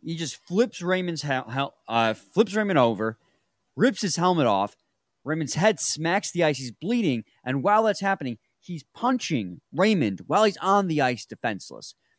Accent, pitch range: American, 135-200 Hz